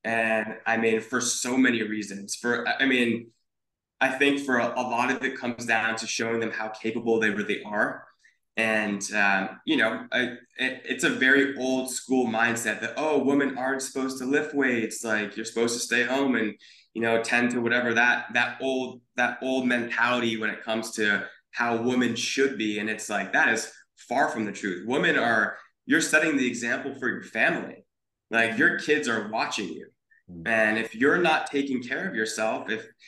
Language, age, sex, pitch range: English, 20-39, male, 110-135 Hz